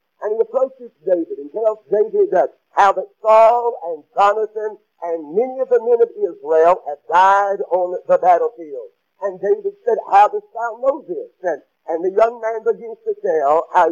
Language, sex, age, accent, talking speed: English, male, 60-79, American, 175 wpm